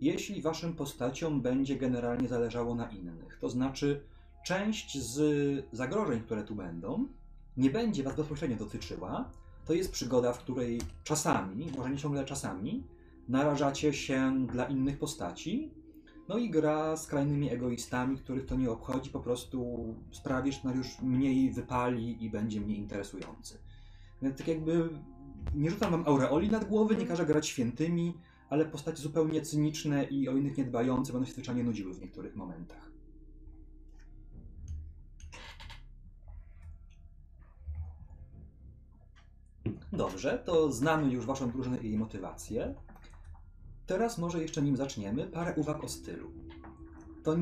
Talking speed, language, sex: 130 wpm, Polish, male